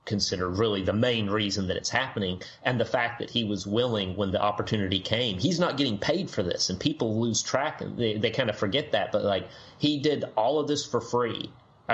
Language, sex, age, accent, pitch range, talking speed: English, male, 30-49, American, 100-120 Hz, 230 wpm